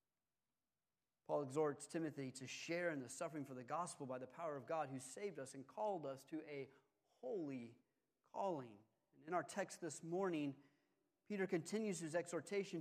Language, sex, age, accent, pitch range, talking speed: English, male, 40-59, American, 150-190 Hz, 165 wpm